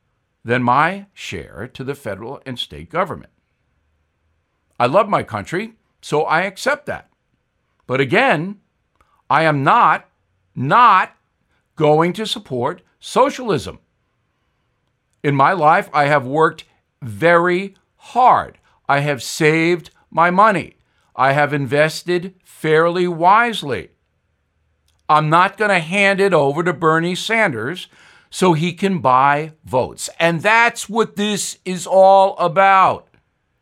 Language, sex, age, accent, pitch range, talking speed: English, male, 60-79, American, 140-205 Hz, 120 wpm